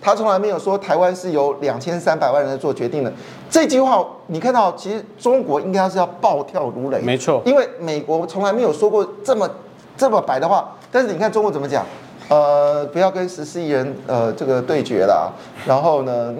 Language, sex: Chinese, male